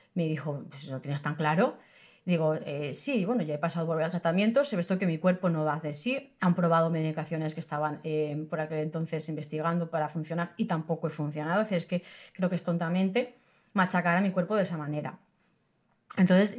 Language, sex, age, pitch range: Spanish, female, 30-49, 160-200 Hz